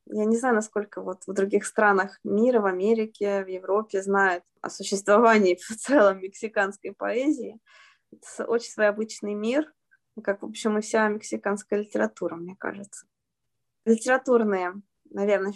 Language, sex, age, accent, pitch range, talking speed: Russian, female, 20-39, native, 195-235 Hz, 140 wpm